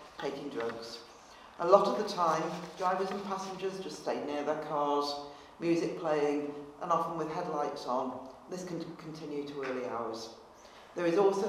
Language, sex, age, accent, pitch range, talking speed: English, female, 50-69, British, 145-180 Hz, 160 wpm